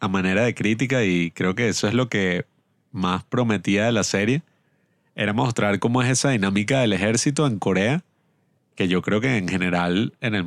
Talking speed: 195 wpm